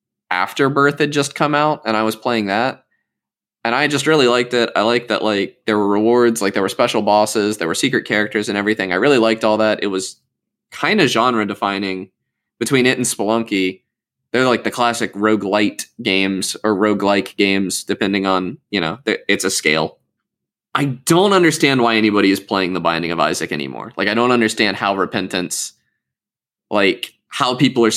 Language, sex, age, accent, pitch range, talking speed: English, male, 20-39, American, 100-125 Hz, 185 wpm